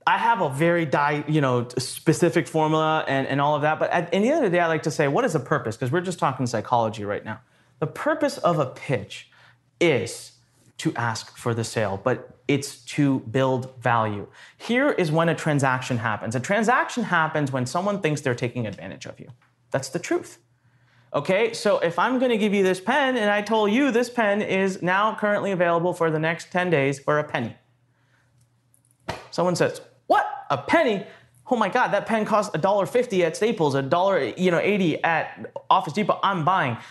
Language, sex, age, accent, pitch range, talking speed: English, male, 30-49, American, 130-200 Hz, 200 wpm